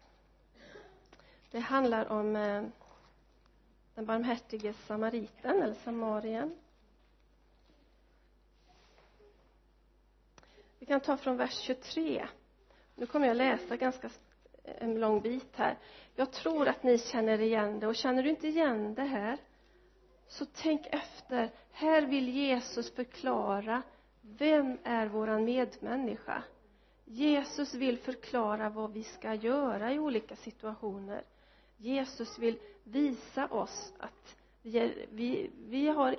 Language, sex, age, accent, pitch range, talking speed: Swedish, female, 40-59, native, 220-275 Hz, 115 wpm